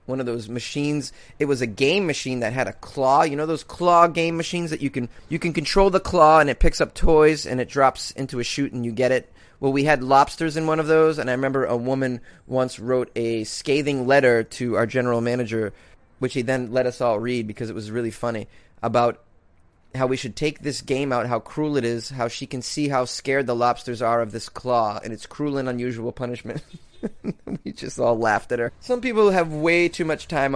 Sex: male